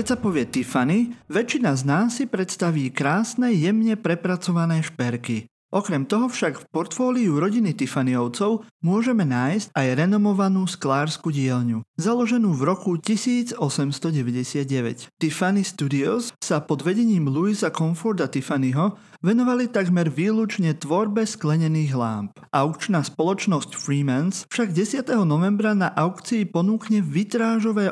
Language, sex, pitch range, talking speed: Slovak, male, 145-205 Hz, 115 wpm